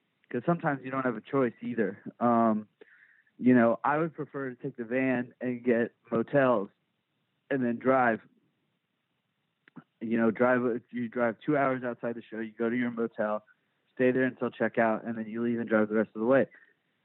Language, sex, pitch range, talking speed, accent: English, male, 105-120 Hz, 195 wpm, American